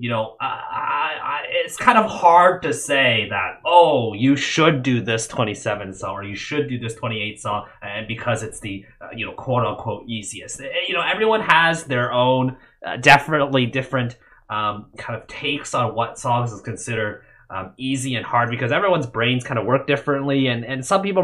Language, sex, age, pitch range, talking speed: English, male, 30-49, 115-150 Hz, 200 wpm